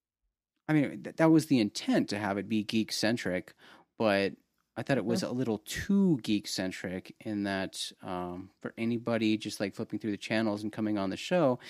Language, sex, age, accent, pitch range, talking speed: English, male, 30-49, American, 100-125 Hz, 195 wpm